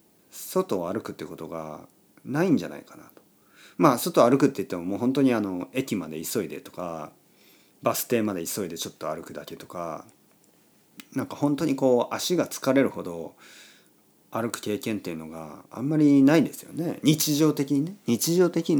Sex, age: male, 40-59